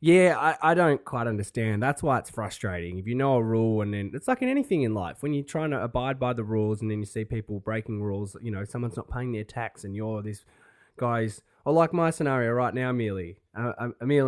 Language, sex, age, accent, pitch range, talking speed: English, male, 20-39, Australian, 105-130 Hz, 245 wpm